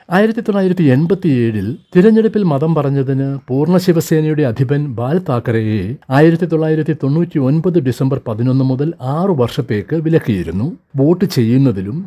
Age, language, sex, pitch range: 60-79, Malayalam, male, 120-165 Hz